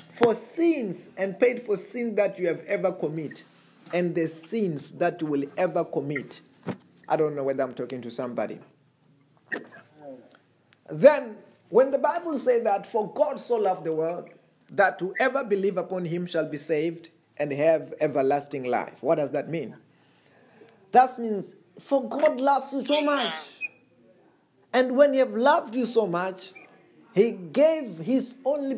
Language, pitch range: English, 160-255 Hz